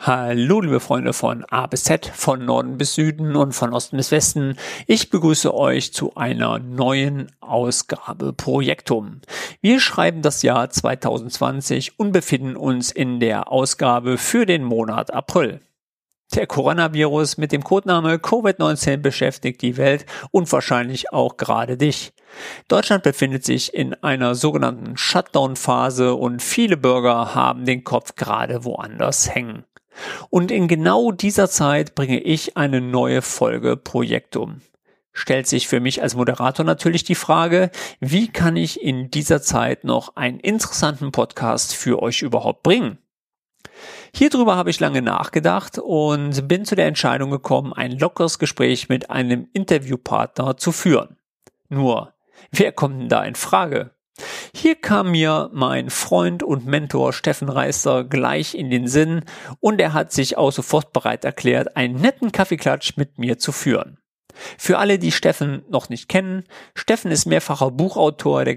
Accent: German